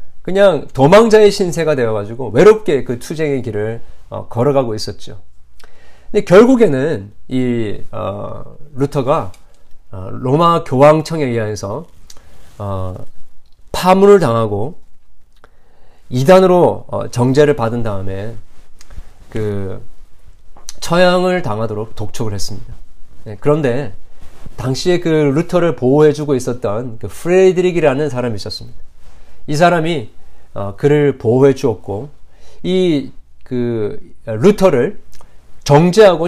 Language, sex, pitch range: Korean, male, 105-155 Hz